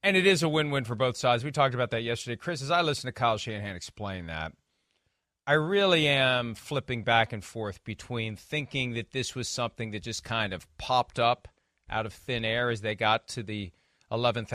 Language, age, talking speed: English, 40-59, 210 wpm